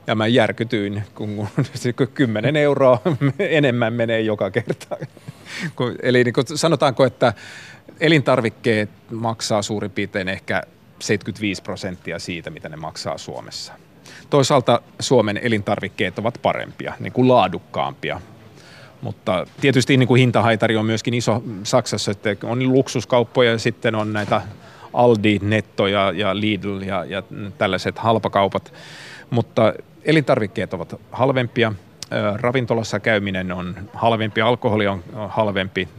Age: 30-49